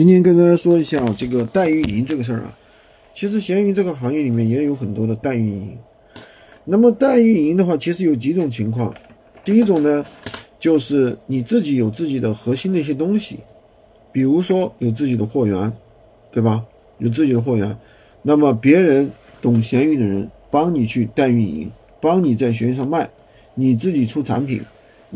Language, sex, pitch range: Chinese, male, 115-170 Hz